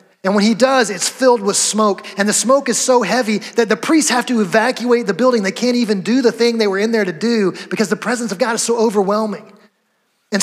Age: 30-49